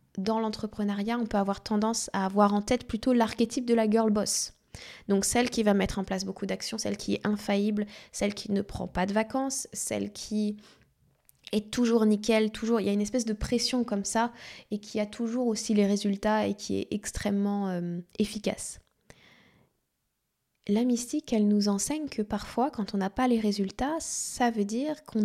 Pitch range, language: 200-230 Hz, French